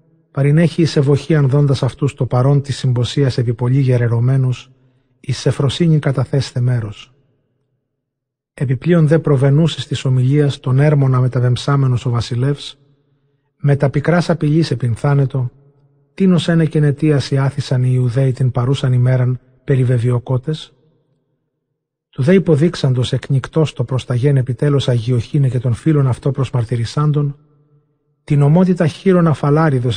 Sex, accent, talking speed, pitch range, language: male, native, 130 wpm, 130-150 Hz, Greek